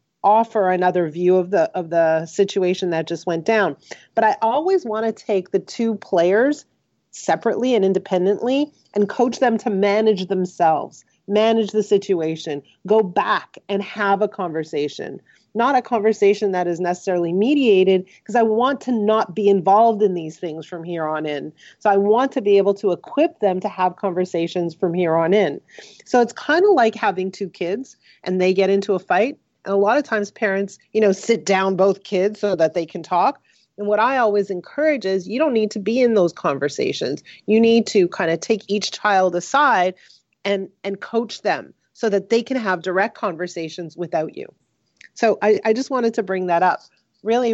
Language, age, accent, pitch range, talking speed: English, 40-59, American, 180-220 Hz, 195 wpm